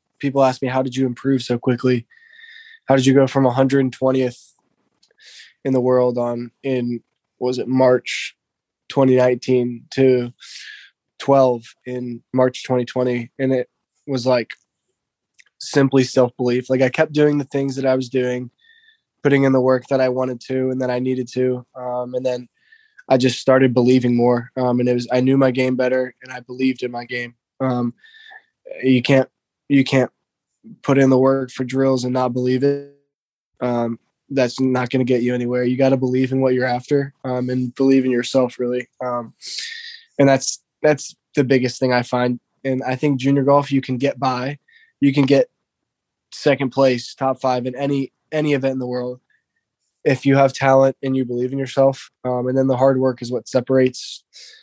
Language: English